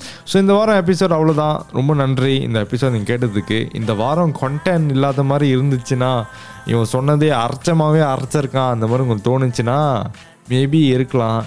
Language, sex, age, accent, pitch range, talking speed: Tamil, male, 20-39, native, 110-145 Hz, 140 wpm